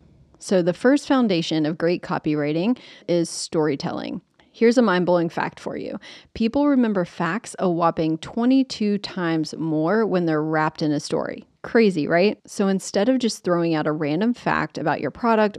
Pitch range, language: 160-220 Hz, English